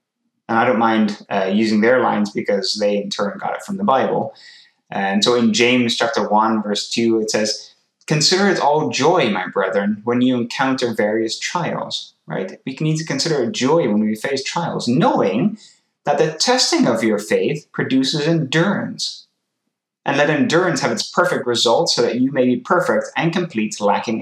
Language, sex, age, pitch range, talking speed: English, male, 20-39, 110-175 Hz, 185 wpm